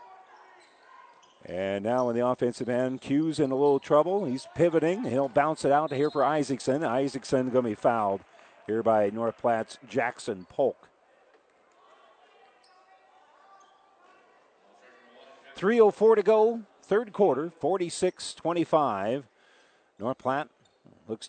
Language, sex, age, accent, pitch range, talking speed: English, male, 50-69, American, 125-165 Hz, 115 wpm